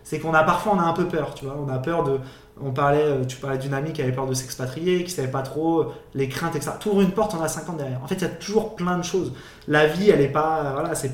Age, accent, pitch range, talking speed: 20-39, French, 135-170 Hz, 305 wpm